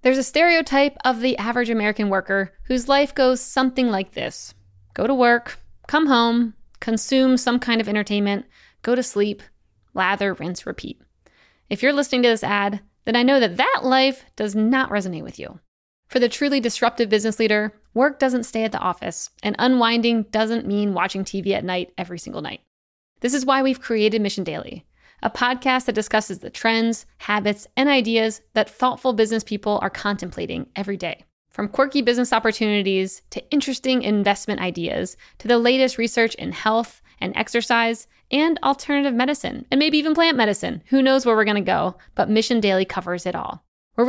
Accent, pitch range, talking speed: American, 210-255 Hz, 180 wpm